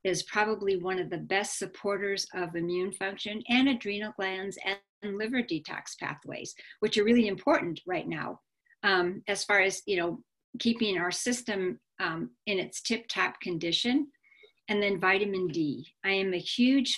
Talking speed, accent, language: 160 wpm, American, English